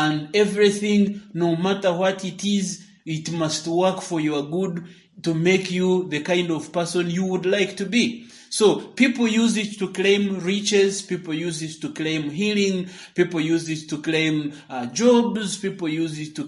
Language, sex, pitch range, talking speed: English, male, 180-225 Hz, 180 wpm